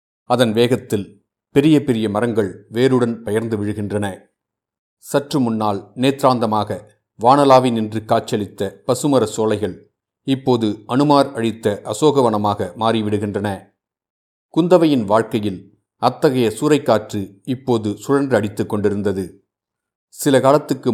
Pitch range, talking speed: 105-125 Hz, 85 wpm